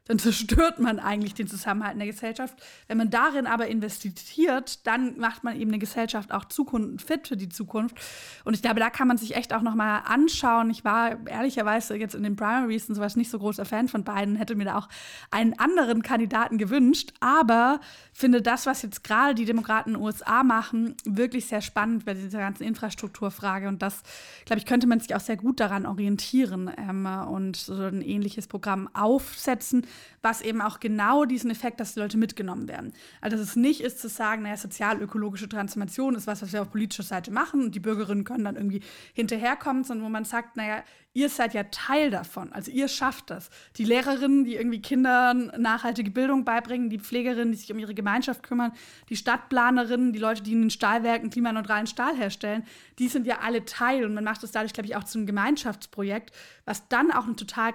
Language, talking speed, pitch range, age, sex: German, 200 wpm, 210-245 Hz, 20-39, female